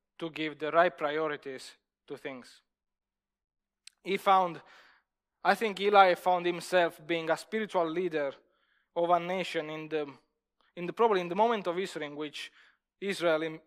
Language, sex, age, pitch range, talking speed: English, male, 20-39, 155-185 Hz, 150 wpm